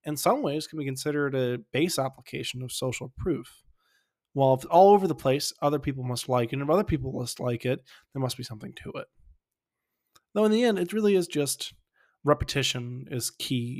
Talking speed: 195 wpm